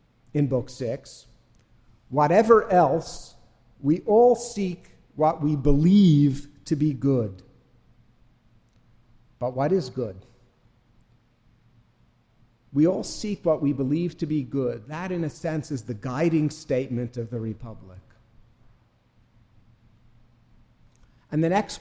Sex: male